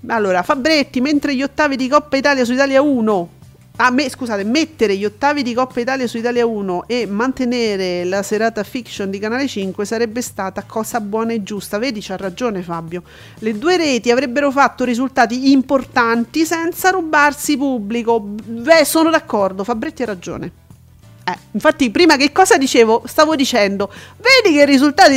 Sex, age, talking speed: female, 40-59, 160 wpm